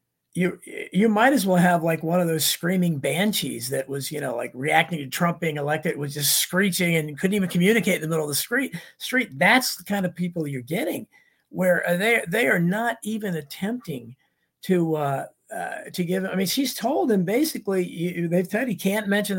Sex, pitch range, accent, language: male, 155-205 Hz, American, English